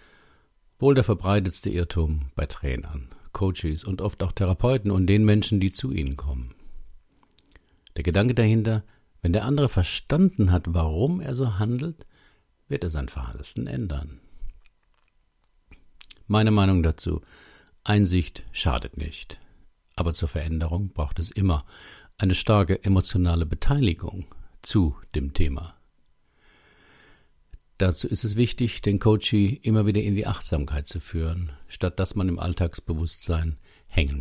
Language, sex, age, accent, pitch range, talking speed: German, male, 50-69, German, 80-100 Hz, 130 wpm